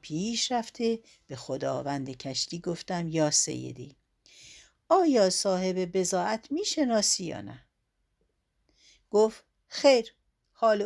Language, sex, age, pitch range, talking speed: Persian, female, 60-79, 185-245 Hz, 100 wpm